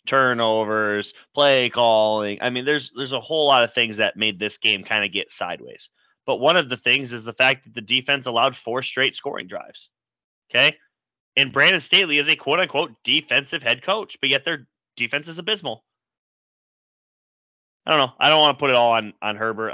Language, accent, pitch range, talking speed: English, American, 110-185 Hz, 200 wpm